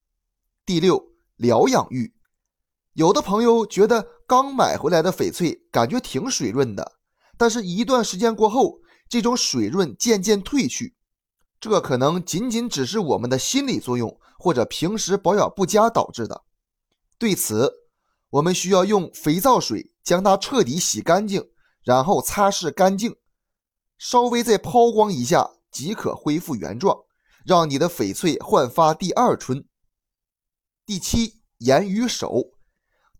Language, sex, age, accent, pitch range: Chinese, male, 20-39, native, 170-235 Hz